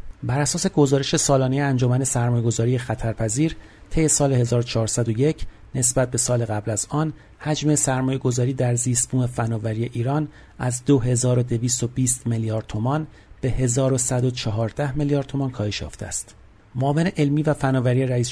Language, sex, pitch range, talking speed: Persian, male, 115-140 Hz, 125 wpm